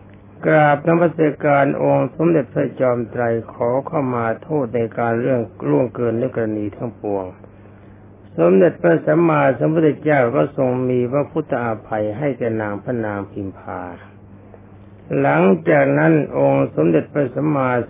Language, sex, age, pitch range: Thai, male, 60-79, 100-140 Hz